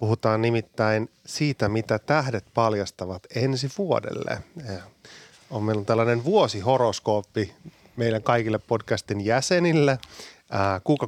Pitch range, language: 105-130 Hz, Finnish